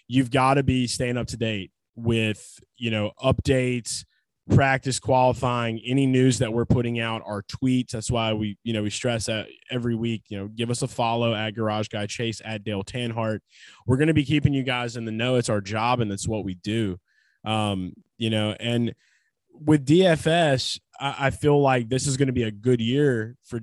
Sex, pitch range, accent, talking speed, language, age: male, 110-130 Hz, American, 210 wpm, English, 20-39